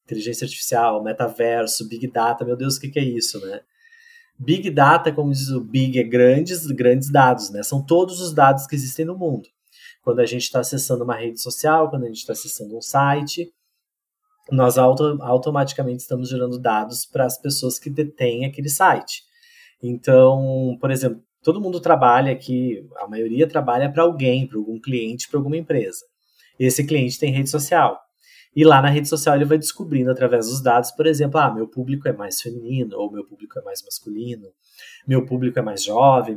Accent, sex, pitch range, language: Brazilian, male, 125-155 Hz, Portuguese